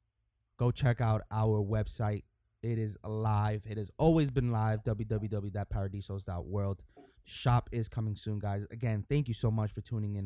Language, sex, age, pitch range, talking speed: English, male, 20-39, 105-120 Hz, 160 wpm